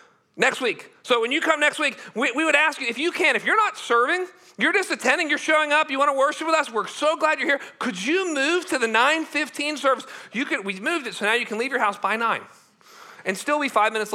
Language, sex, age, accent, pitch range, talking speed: English, male, 40-59, American, 195-270 Hz, 265 wpm